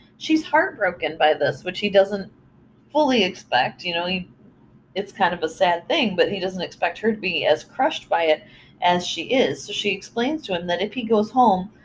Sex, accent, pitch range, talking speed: female, American, 180-240 Hz, 215 wpm